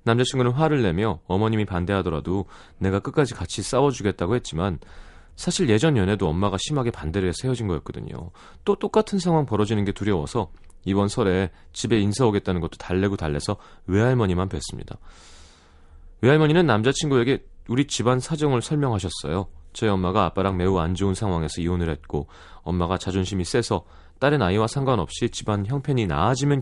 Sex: male